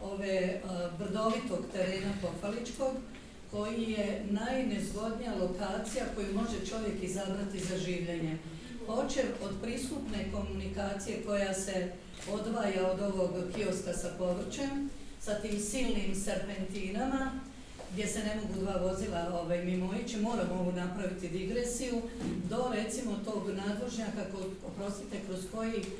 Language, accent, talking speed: English, Croatian, 120 wpm